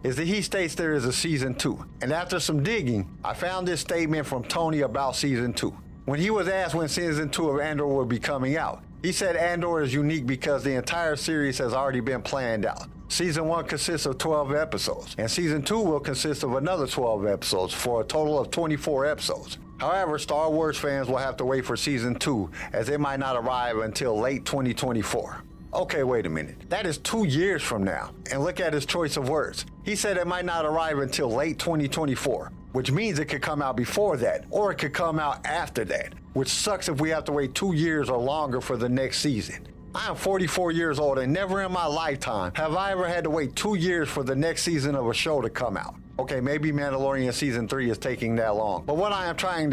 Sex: male